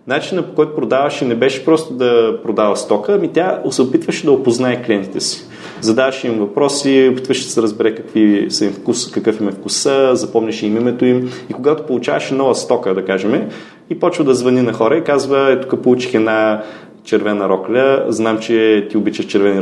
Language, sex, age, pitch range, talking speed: Bulgarian, male, 30-49, 110-140 Hz, 190 wpm